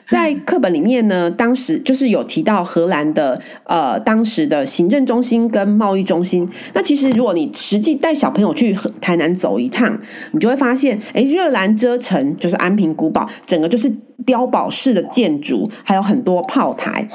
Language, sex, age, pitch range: Chinese, female, 30-49, 185-270 Hz